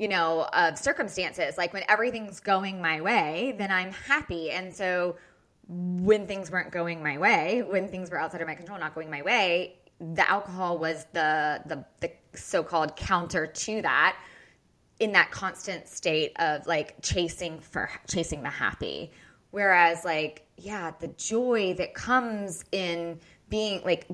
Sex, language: female, English